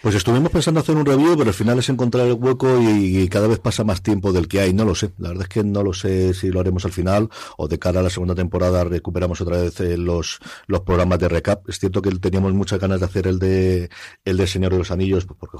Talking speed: 275 wpm